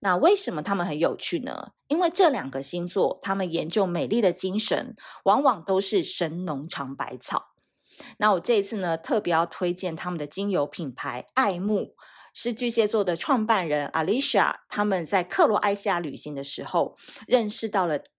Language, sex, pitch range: Chinese, female, 175-230 Hz